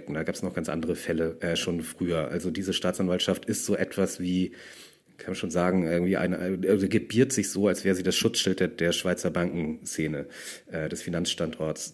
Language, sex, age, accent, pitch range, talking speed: German, male, 30-49, German, 90-105 Hz, 190 wpm